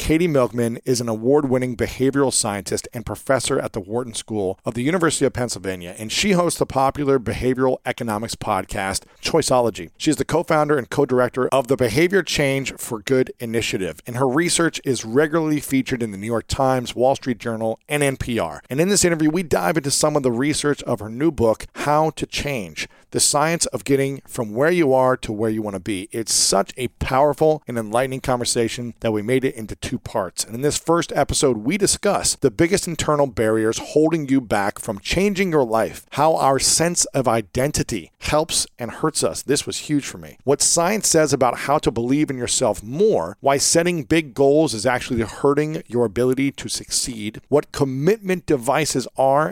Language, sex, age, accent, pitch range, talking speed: English, male, 40-59, American, 115-150 Hz, 195 wpm